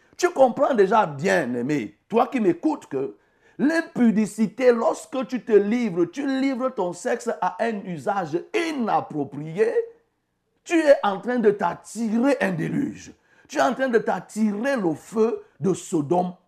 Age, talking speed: 60-79, 145 wpm